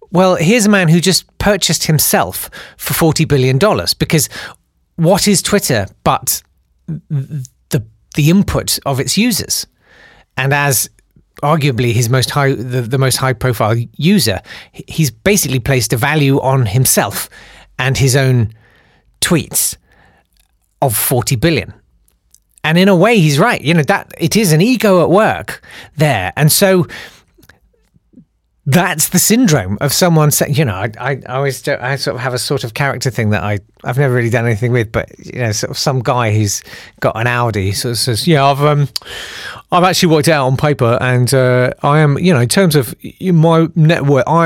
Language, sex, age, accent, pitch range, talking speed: English, male, 40-59, British, 120-160 Hz, 175 wpm